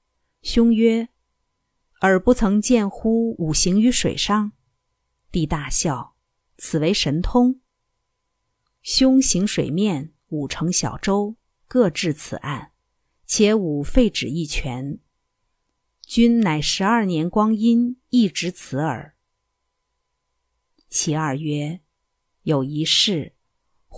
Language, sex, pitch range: Chinese, female, 155-220 Hz